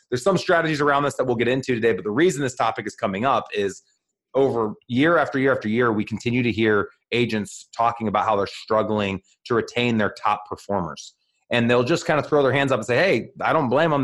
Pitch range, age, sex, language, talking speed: 105-130 Hz, 30-49, male, English, 240 wpm